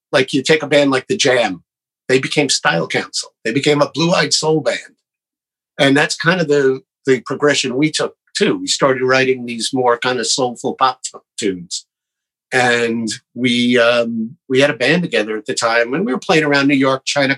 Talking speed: 195 wpm